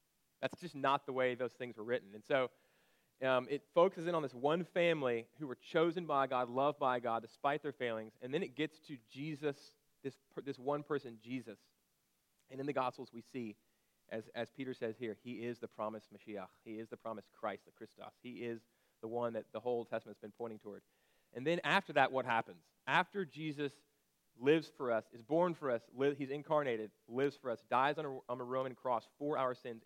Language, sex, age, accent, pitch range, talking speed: English, male, 30-49, American, 115-145 Hz, 215 wpm